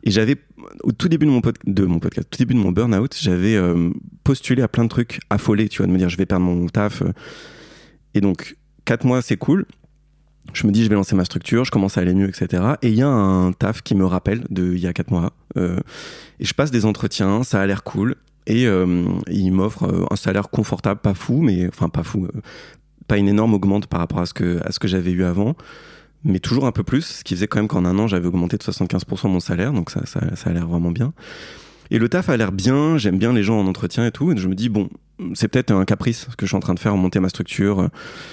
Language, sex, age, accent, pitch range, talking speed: French, male, 30-49, French, 90-115 Hz, 270 wpm